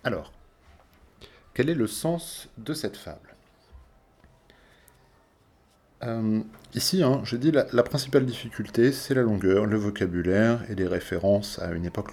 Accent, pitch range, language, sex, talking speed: French, 90-120 Hz, French, male, 140 wpm